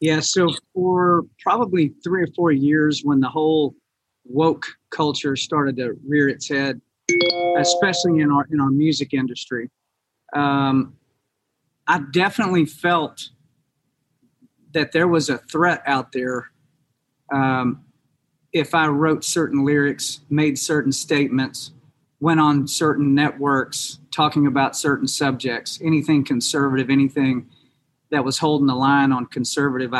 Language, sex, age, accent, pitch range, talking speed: English, male, 40-59, American, 135-160 Hz, 125 wpm